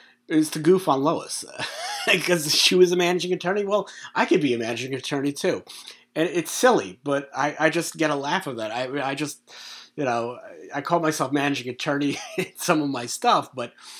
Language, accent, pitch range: English, American, 120-150 Hz